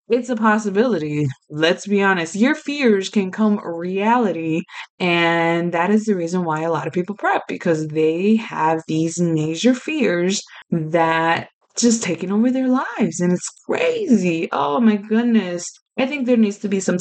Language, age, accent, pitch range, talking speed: English, 20-39, American, 165-215 Hz, 165 wpm